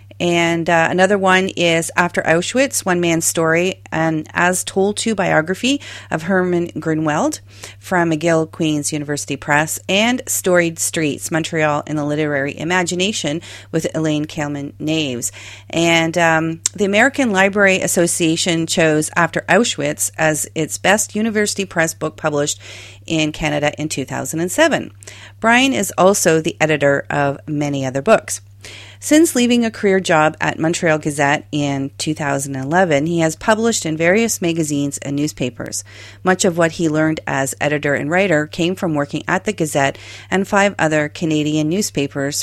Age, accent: 40-59, American